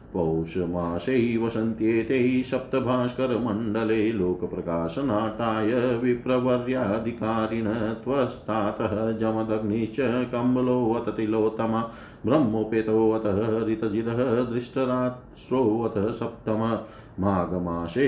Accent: native